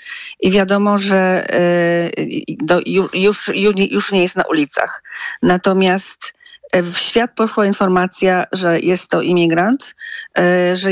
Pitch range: 175-200 Hz